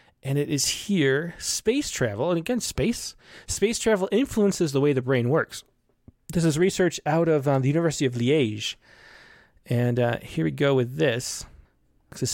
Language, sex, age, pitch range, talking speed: English, male, 30-49, 130-175 Hz, 170 wpm